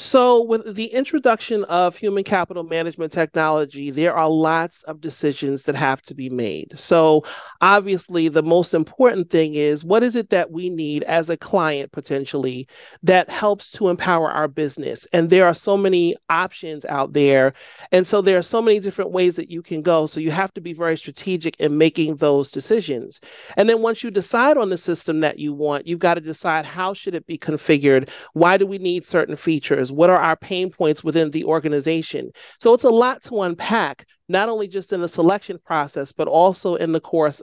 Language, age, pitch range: English, 40-59, 155-195 Hz